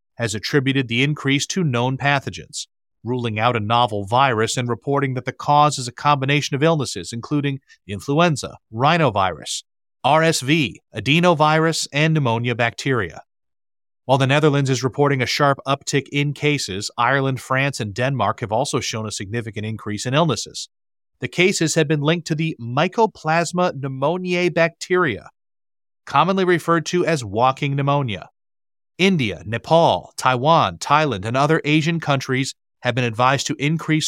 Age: 40-59